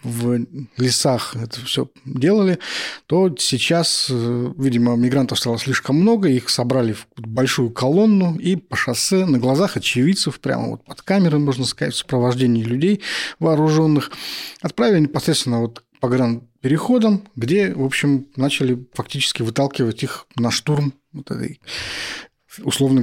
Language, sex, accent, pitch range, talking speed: Russian, male, native, 125-150 Hz, 135 wpm